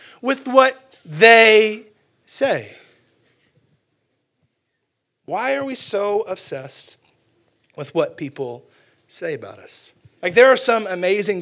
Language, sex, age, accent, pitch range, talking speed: English, male, 30-49, American, 180-245 Hz, 105 wpm